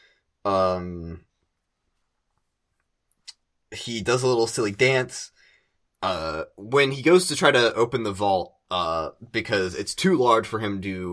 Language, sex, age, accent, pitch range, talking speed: English, male, 20-39, American, 95-130 Hz, 135 wpm